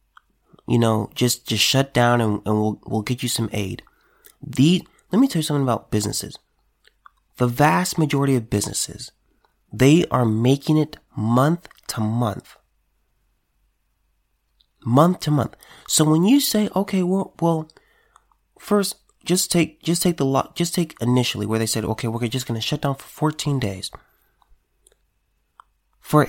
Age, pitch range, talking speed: 30-49, 125-170 Hz, 150 wpm